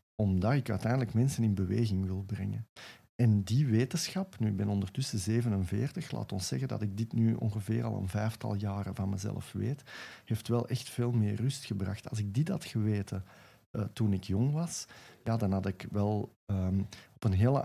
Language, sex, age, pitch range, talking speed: Dutch, male, 50-69, 100-120 Hz, 185 wpm